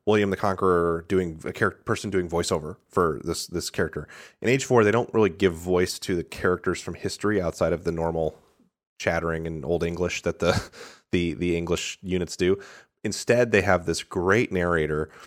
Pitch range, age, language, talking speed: 85-100 Hz, 30-49, English, 185 wpm